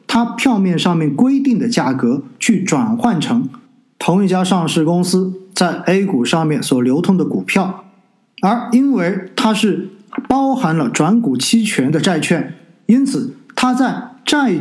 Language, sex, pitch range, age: Chinese, male, 155-235 Hz, 50-69